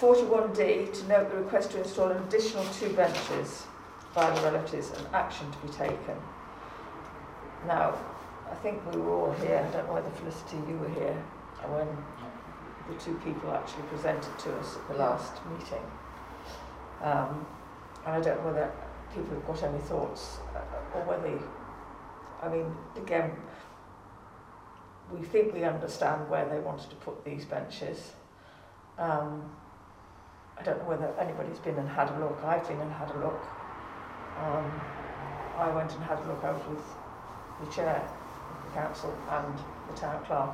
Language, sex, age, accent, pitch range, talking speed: English, female, 50-69, British, 120-180 Hz, 160 wpm